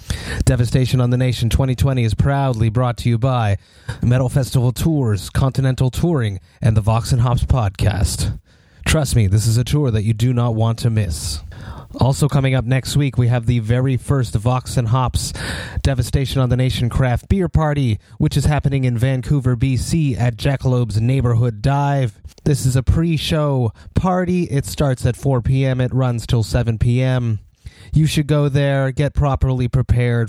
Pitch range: 115-135 Hz